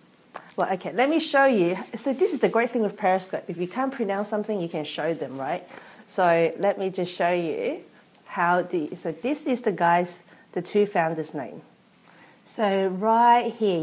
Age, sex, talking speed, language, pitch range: 40-59, female, 190 wpm, English, 180-235 Hz